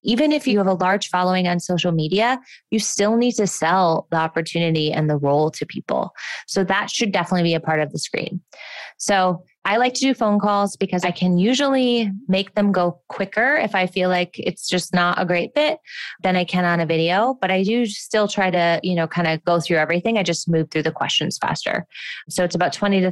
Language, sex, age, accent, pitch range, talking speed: English, female, 20-39, American, 165-215 Hz, 230 wpm